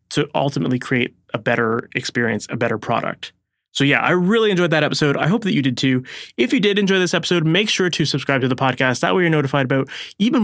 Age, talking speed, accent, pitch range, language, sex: 30-49, 235 wpm, American, 140-195 Hz, English, male